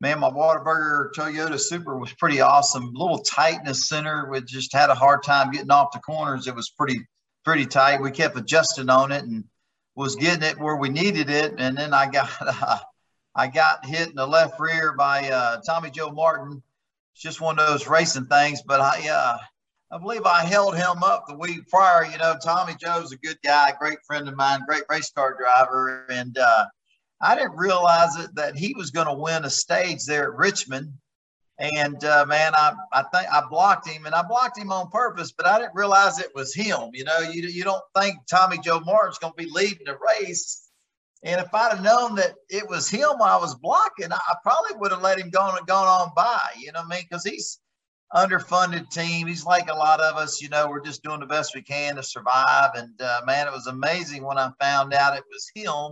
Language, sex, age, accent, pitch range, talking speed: English, male, 50-69, American, 140-175 Hz, 225 wpm